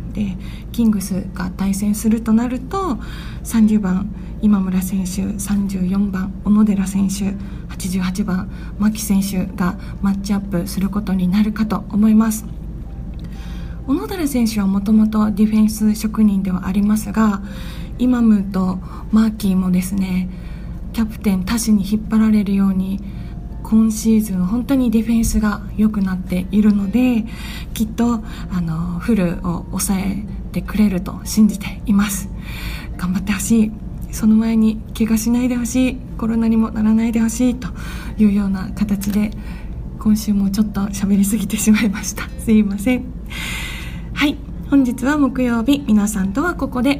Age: 20-39